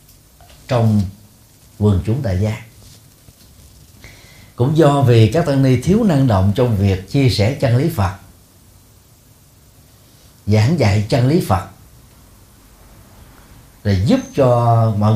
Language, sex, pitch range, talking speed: Vietnamese, male, 100-125 Hz, 120 wpm